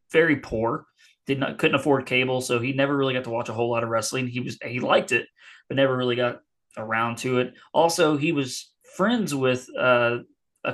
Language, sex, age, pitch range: English, male, 20-39, 125-155 Hz